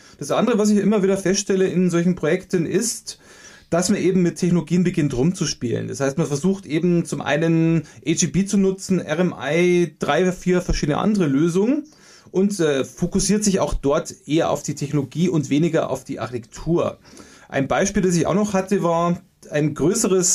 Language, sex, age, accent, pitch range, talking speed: German, male, 30-49, German, 150-195 Hz, 175 wpm